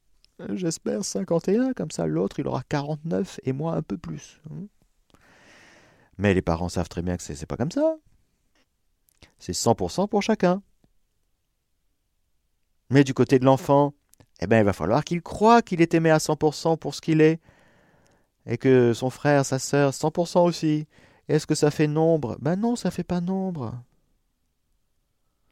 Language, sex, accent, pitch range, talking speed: French, male, French, 105-170 Hz, 160 wpm